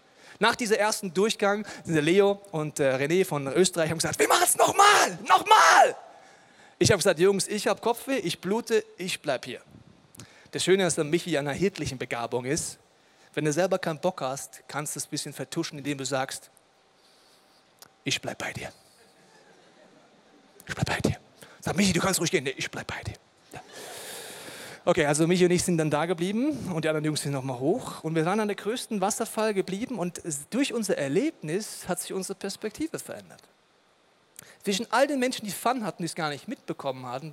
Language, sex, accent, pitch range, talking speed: German, male, German, 160-215 Hz, 190 wpm